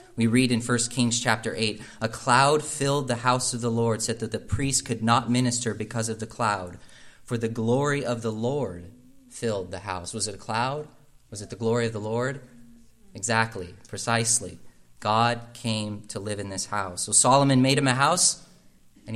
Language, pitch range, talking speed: English, 110-125 Hz, 195 wpm